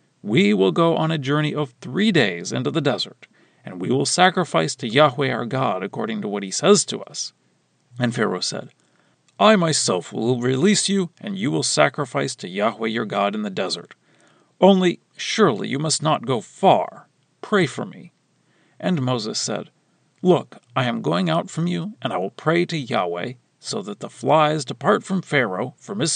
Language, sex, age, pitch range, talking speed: English, male, 40-59, 125-190 Hz, 185 wpm